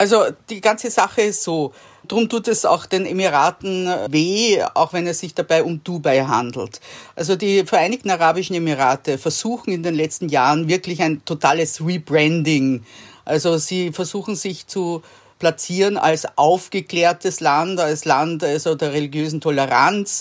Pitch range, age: 150-185 Hz, 50-69